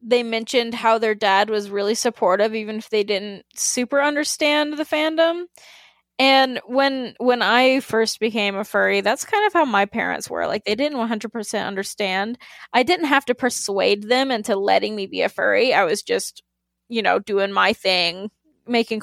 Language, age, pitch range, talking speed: English, 10-29, 200-250 Hz, 180 wpm